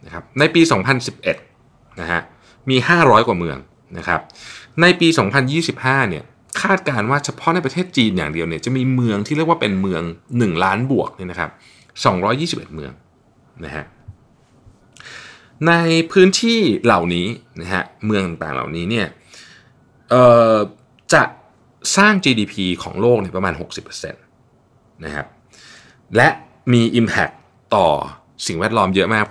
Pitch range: 95-140 Hz